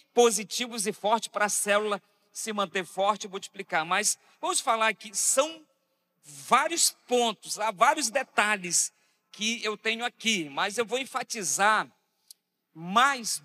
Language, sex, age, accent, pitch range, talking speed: Portuguese, male, 50-69, Brazilian, 190-230 Hz, 135 wpm